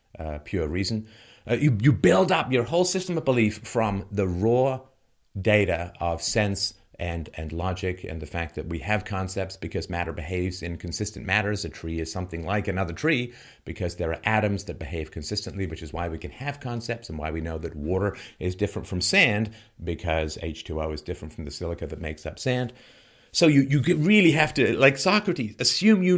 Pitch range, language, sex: 95-125 Hz, English, male